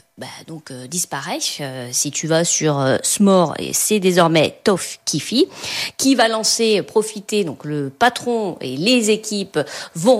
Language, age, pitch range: French, 40-59, 175-255 Hz